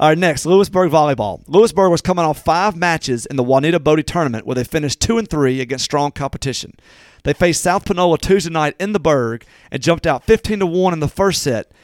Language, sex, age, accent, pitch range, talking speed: English, male, 40-59, American, 140-180 Hz, 220 wpm